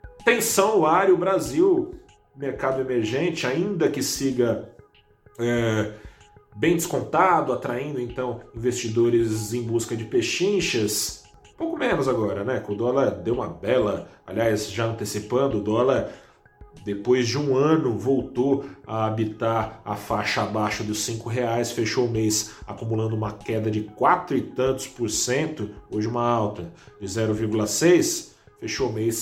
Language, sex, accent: Portuguese, male, Brazilian